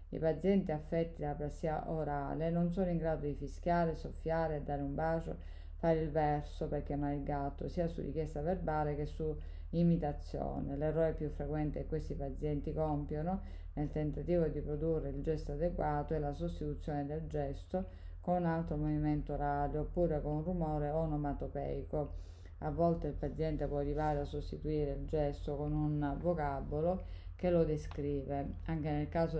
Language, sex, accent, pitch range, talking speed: Italian, female, native, 145-160 Hz, 155 wpm